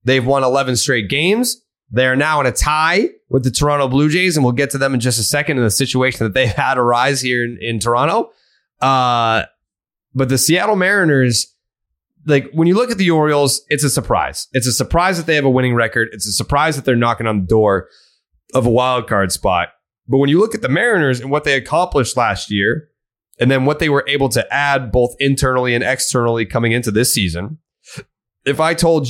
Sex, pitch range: male, 120-155 Hz